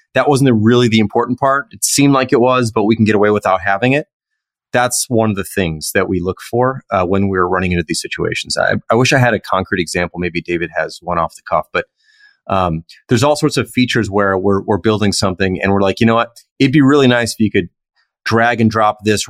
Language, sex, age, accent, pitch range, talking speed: English, male, 30-49, American, 100-130 Hz, 245 wpm